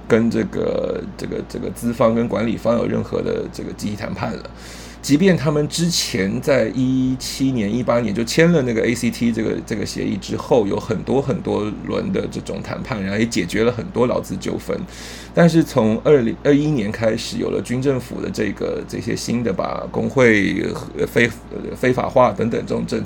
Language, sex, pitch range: Chinese, male, 100-150 Hz